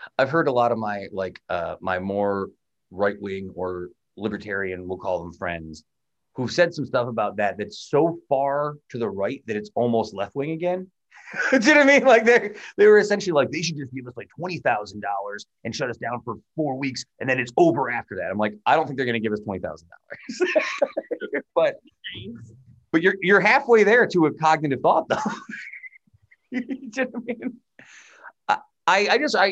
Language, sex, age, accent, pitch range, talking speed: English, male, 30-49, American, 105-175 Hz, 200 wpm